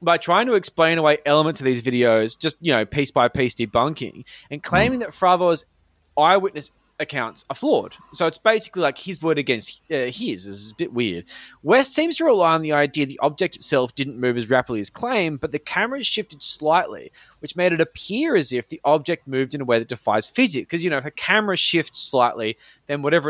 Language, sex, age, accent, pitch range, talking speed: English, male, 20-39, Australian, 130-180 Hz, 215 wpm